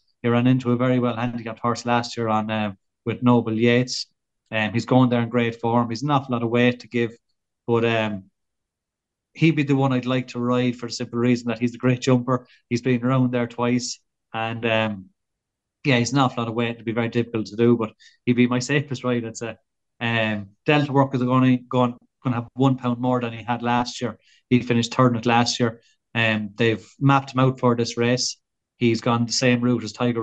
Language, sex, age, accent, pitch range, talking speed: English, male, 20-39, Irish, 115-125 Hz, 230 wpm